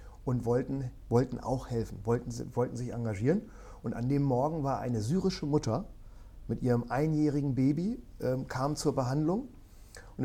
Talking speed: 150 wpm